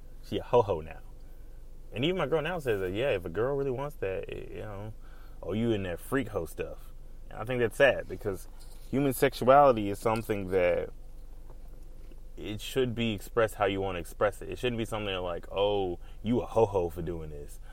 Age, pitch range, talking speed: 20-39, 90-140 Hz, 195 wpm